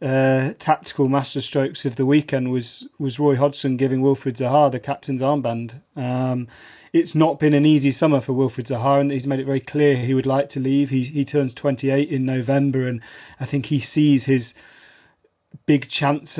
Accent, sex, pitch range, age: British, male, 135-150 Hz, 30-49